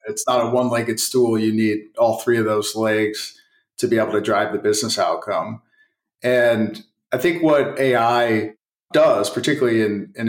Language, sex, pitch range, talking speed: English, male, 115-140 Hz, 175 wpm